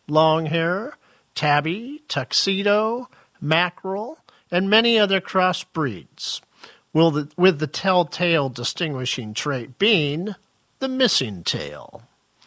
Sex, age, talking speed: male, 50-69, 85 wpm